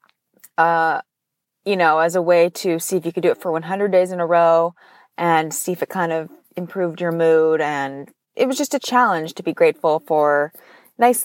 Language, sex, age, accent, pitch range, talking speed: English, female, 20-39, American, 160-205 Hz, 210 wpm